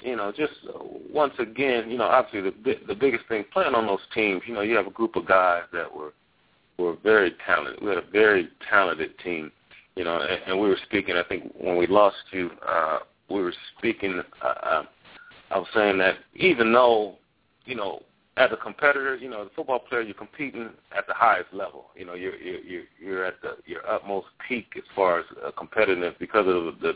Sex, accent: male, American